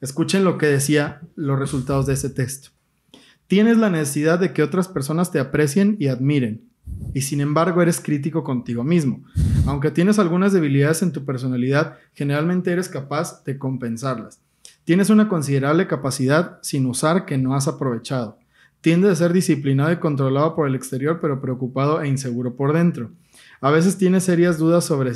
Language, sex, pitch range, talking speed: Spanish, male, 135-165 Hz, 165 wpm